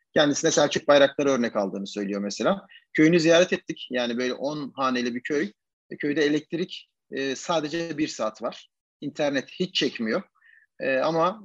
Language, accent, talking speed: Turkish, native, 135 wpm